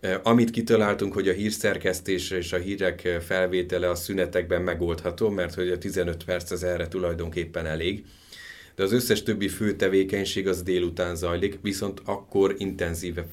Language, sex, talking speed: Hungarian, male, 145 wpm